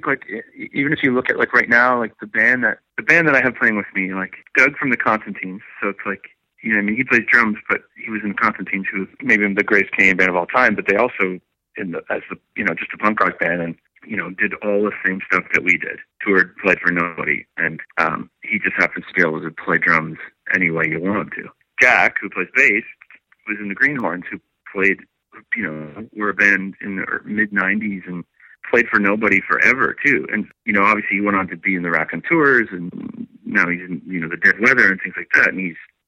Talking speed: 250 wpm